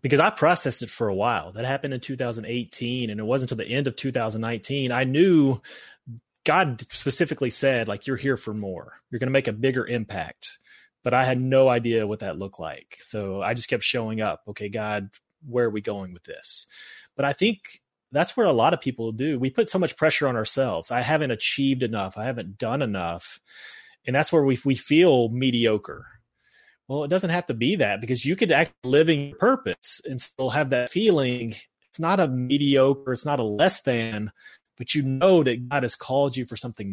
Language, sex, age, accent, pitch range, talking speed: English, male, 30-49, American, 115-145 Hz, 210 wpm